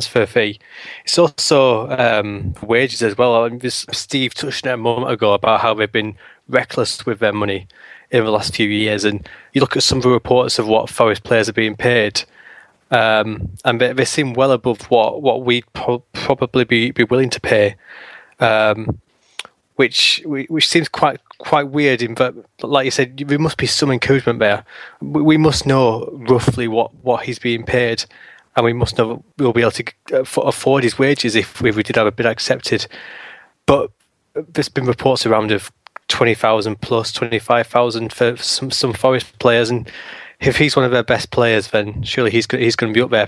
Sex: male